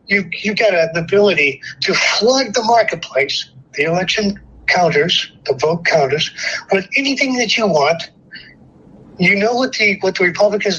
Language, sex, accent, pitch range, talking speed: English, male, American, 165-220 Hz, 150 wpm